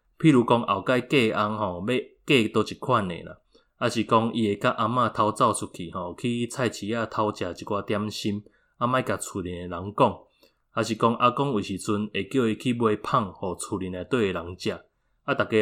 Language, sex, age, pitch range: Chinese, male, 20-39, 100-120 Hz